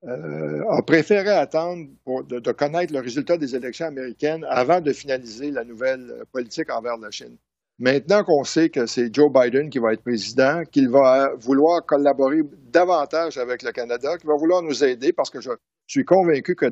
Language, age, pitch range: French, 60-79, 130-175 Hz